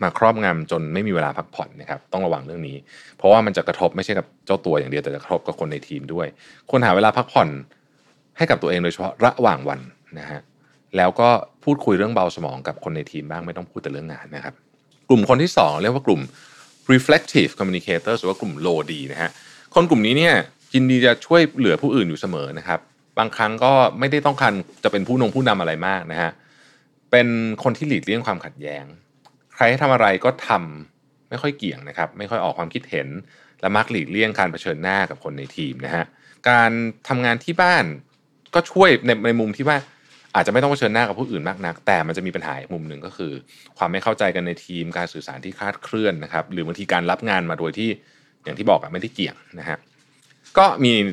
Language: Thai